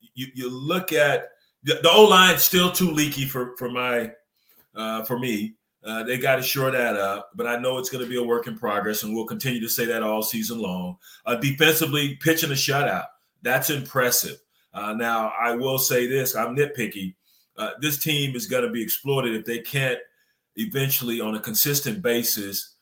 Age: 30-49